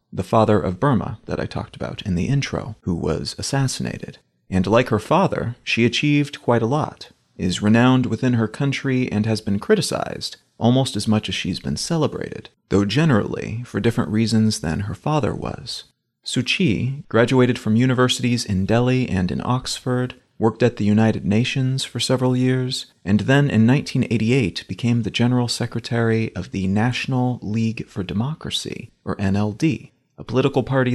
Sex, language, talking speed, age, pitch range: male, English, 165 wpm, 30-49, 105-130 Hz